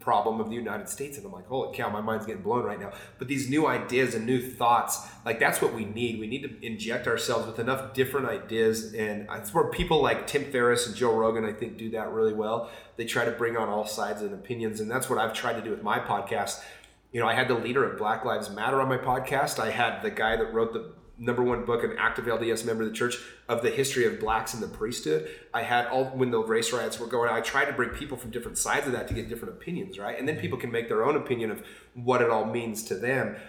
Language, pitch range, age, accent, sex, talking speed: English, 110-130 Hz, 30-49, American, male, 265 wpm